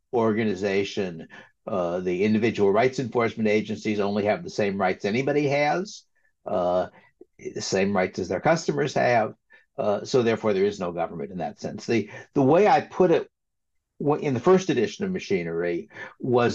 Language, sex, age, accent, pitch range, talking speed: English, male, 60-79, American, 105-155 Hz, 165 wpm